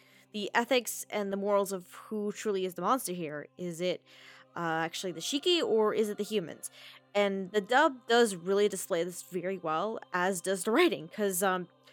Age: 20-39